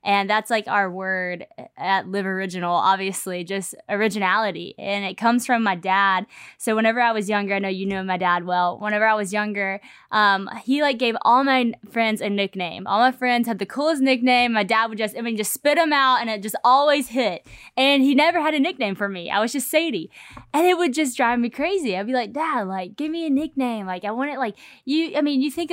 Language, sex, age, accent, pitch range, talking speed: English, female, 10-29, American, 200-260 Hz, 240 wpm